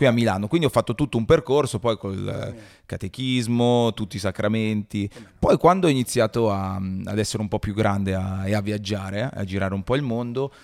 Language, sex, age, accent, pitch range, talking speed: Italian, male, 30-49, native, 100-115 Hz, 210 wpm